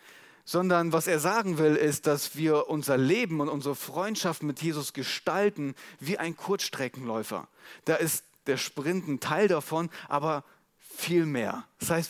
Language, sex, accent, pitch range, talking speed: German, male, German, 145-185 Hz, 155 wpm